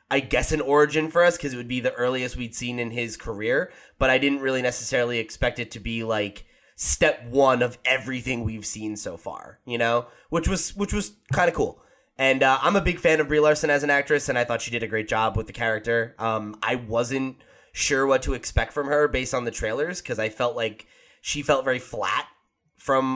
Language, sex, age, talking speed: English, male, 20-39, 230 wpm